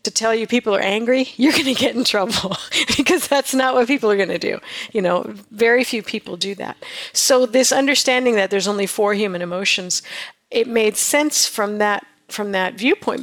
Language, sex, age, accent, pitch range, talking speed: English, female, 50-69, American, 200-260 Hz, 205 wpm